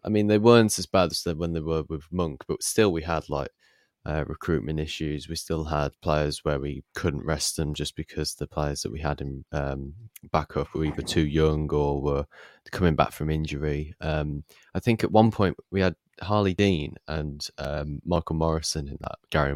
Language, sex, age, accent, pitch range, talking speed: English, male, 20-39, British, 75-85 Hz, 205 wpm